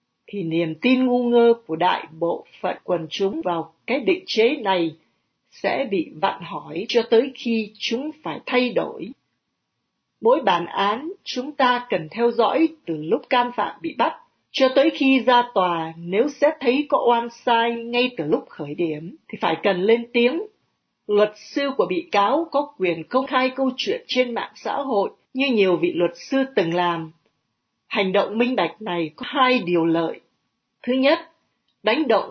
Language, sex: Vietnamese, female